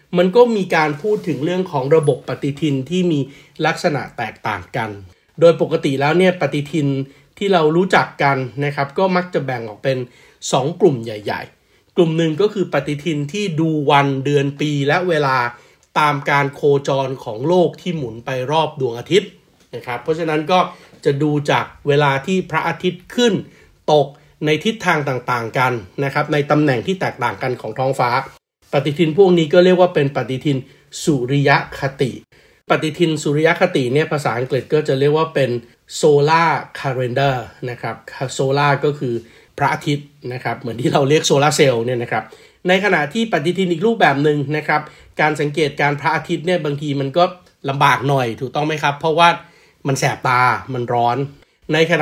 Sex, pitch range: male, 135-165 Hz